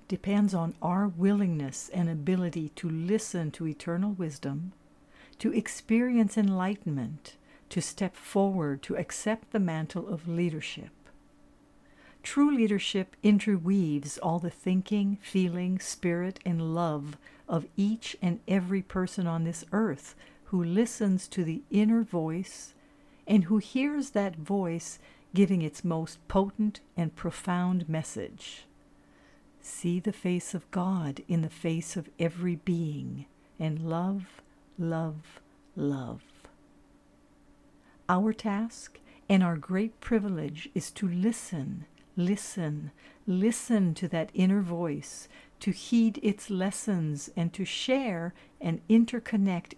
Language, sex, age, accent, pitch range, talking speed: English, female, 60-79, American, 165-200 Hz, 120 wpm